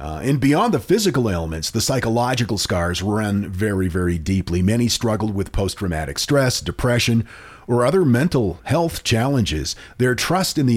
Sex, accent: male, American